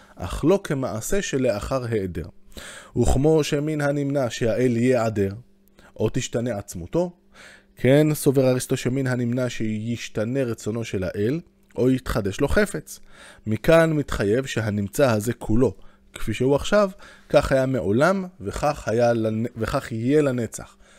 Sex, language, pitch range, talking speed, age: male, Hebrew, 115-150 Hz, 125 wpm, 20-39